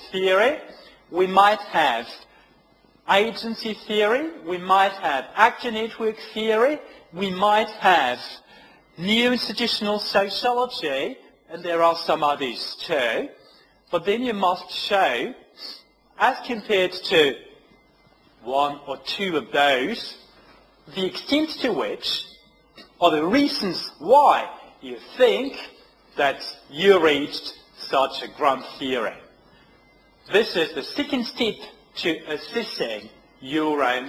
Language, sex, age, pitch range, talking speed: French, male, 40-59, 165-235 Hz, 110 wpm